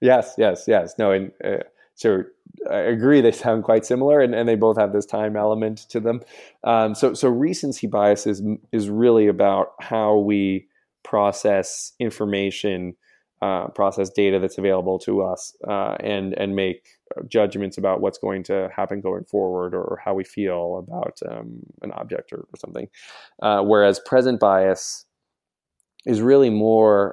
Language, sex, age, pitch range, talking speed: English, male, 20-39, 95-110 Hz, 160 wpm